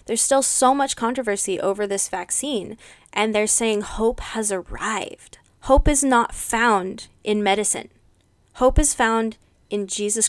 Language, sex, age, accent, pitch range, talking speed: English, female, 20-39, American, 195-255 Hz, 145 wpm